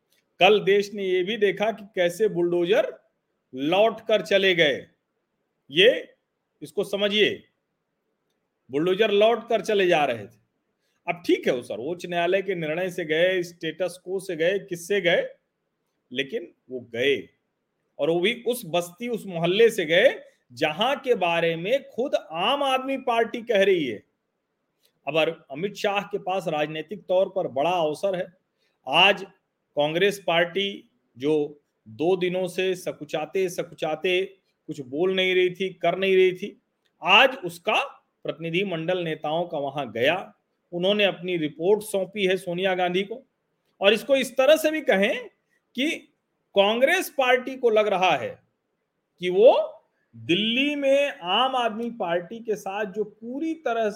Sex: male